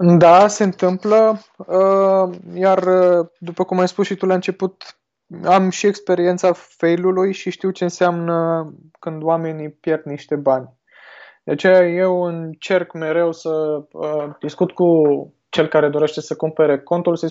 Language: Romanian